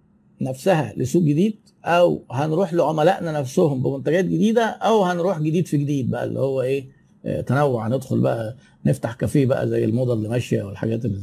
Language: Arabic